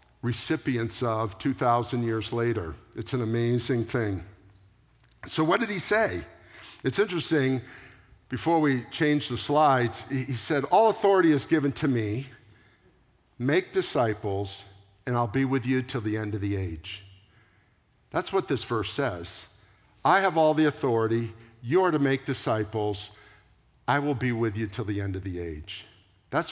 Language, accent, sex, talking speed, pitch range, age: English, American, male, 155 wpm, 110-150 Hz, 50-69